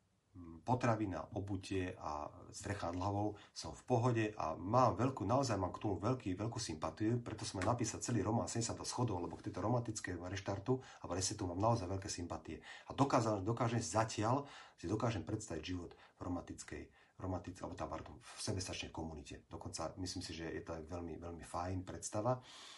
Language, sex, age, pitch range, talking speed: Slovak, male, 40-59, 90-115 Hz, 170 wpm